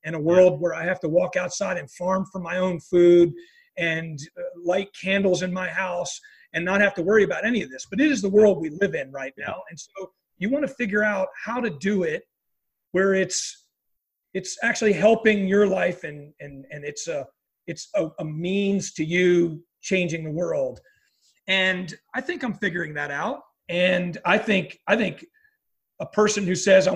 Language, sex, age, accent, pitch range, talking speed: English, male, 30-49, American, 170-200 Hz, 200 wpm